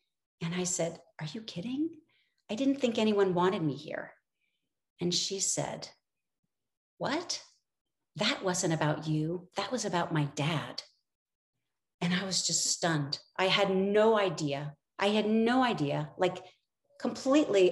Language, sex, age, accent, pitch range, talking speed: English, female, 40-59, American, 165-220 Hz, 140 wpm